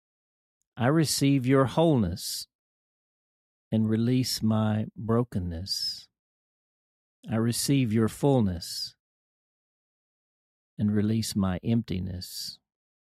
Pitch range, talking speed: 95-130 Hz, 75 wpm